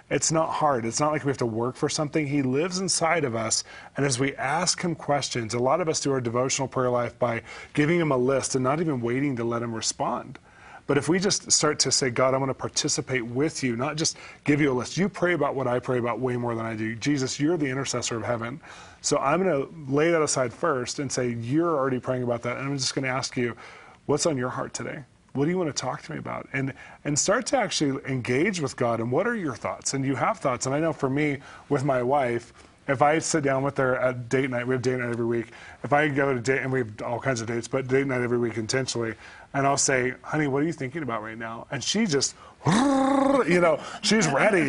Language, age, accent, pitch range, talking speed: English, 30-49, American, 125-150 Hz, 260 wpm